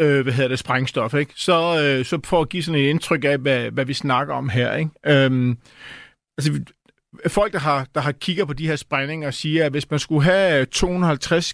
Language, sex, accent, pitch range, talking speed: Danish, male, native, 135-170 Hz, 215 wpm